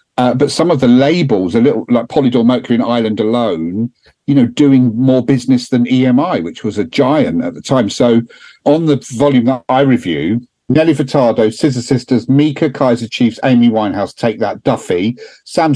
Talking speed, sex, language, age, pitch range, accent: 185 wpm, male, English, 50-69, 110-130 Hz, British